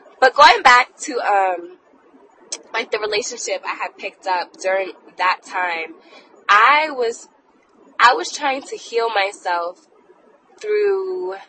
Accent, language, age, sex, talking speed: American, English, 20-39, female, 125 wpm